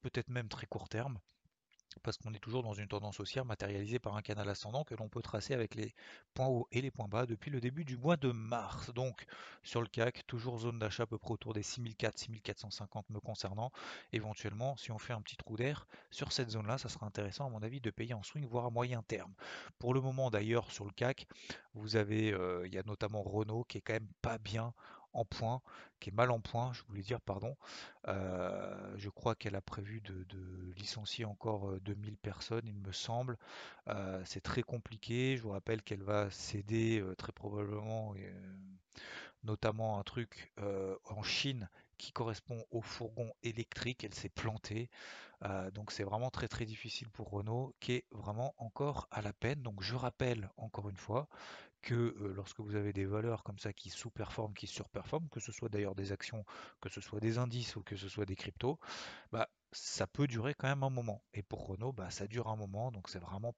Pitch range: 105-120 Hz